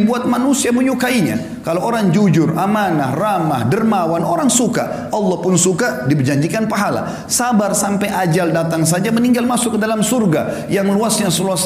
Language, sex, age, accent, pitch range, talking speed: Indonesian, male, 40-59, native, 155-205 Hz, 150 wpm